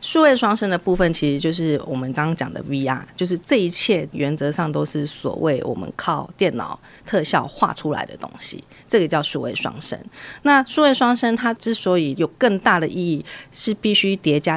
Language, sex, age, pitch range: Chinese, female, 30-49, 150-195 Hz